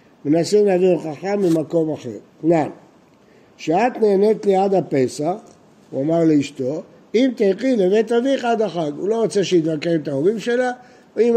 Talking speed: 155 wpm